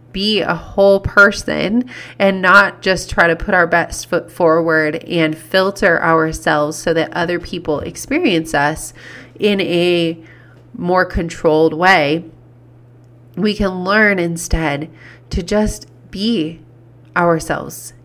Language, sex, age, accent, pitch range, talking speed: English, female, 30-49, American, 160-200 Hz, 120 wpm